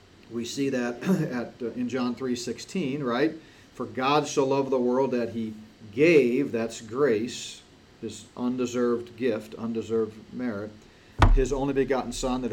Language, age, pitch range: English, 40-59, 115-135 Hz